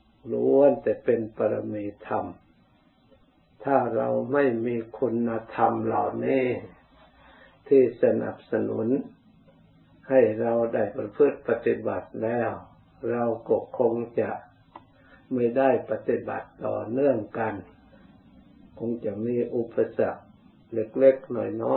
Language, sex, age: Thai, male, 60-79